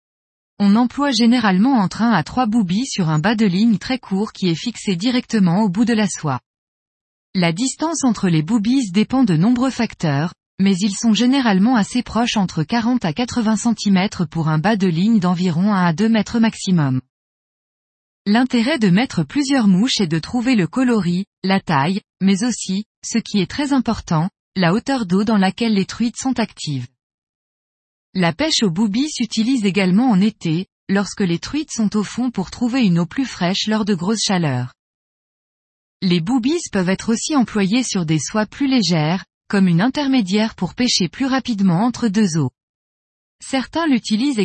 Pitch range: 185-240 Hz